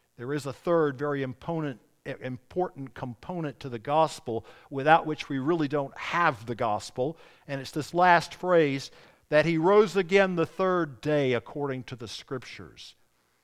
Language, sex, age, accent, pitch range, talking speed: English, male, 50-69, American, 135-185 Hz, 150 wpm